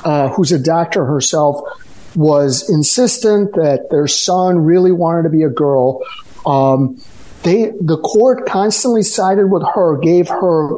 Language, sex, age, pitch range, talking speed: English, male, 50-69, 145-205 Hz, 145 wpm